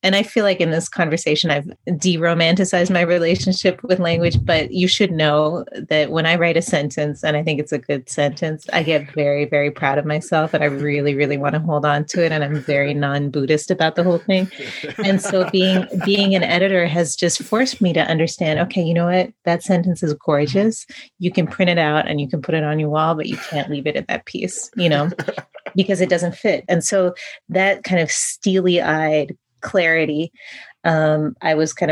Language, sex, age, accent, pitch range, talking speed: English, female, 30-49, American, 150-180 Hz, 215 wpm